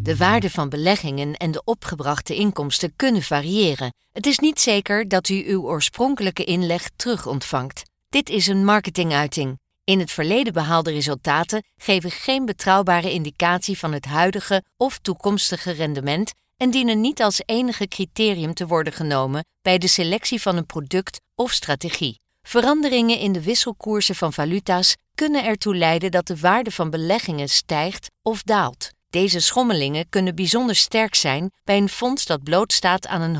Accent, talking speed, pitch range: Dutch, 155 wpm, 160-215 Hz